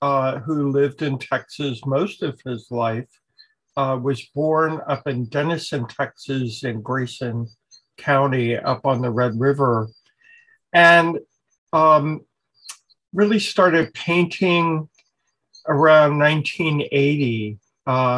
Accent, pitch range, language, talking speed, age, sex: American, 130-155 Hz, English, 100 wpm, 50-69, male